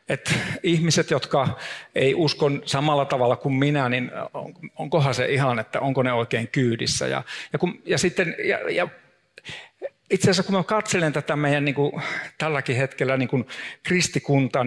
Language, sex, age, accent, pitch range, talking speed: Finnish, male, 50-69, native, 120-150 Hz, 160 wpm